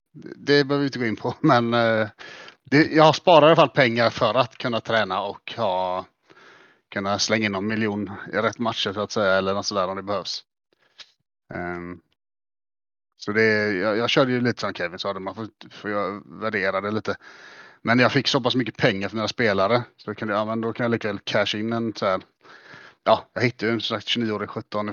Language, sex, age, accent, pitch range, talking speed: Swedish, male, 30-49, Norwegian, 100-115 Hz, 220 wpm